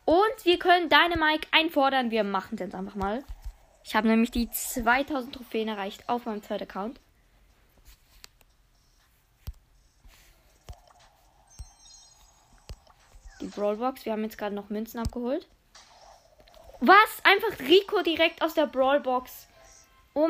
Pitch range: 210-270 Hz